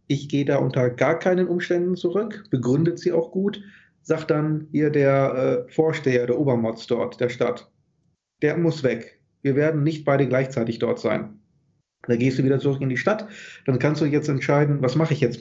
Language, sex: German, male